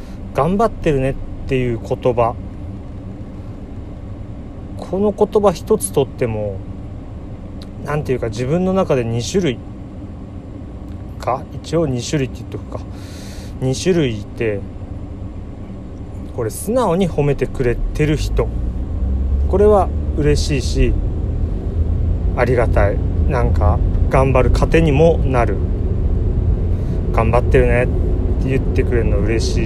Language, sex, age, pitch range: Japanese, male, 40-59, 85-105 Hz